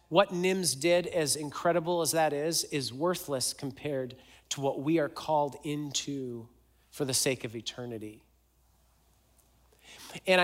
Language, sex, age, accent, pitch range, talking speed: English, male, 40-59, American, 115-165 Hz, 130 wpm